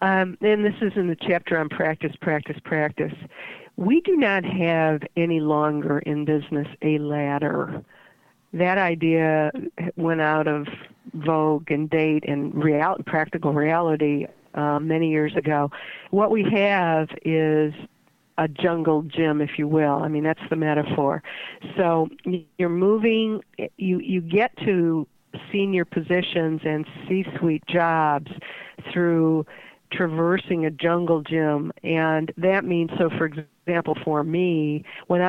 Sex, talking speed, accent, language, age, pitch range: female, 135 wpm, American, English, 50-69, 155-180 Hz